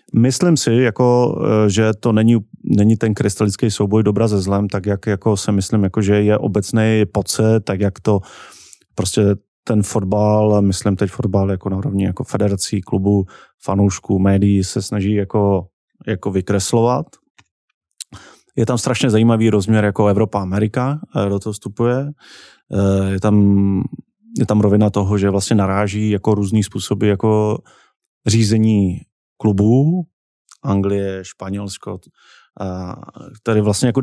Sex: male